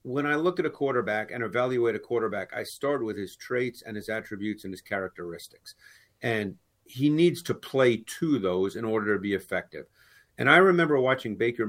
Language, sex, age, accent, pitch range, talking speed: English, male, 50-69, American, 110-145 Hz, 195 wpm